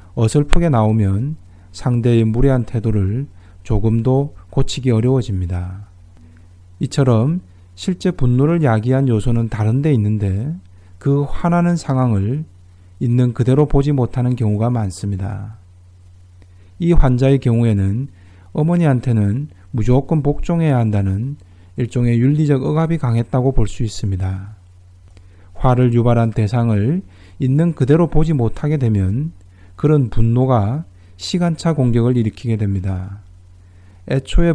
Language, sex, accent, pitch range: Korean, male, native, 95-135 Hz